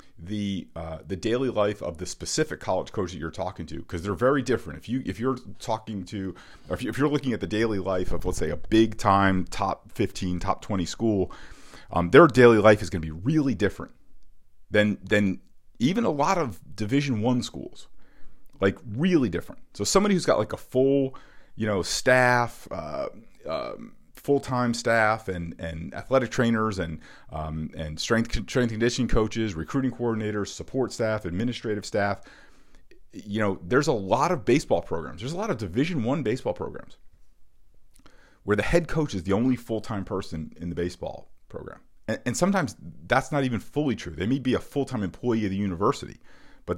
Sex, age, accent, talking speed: male, 40-59, American, 185 wpm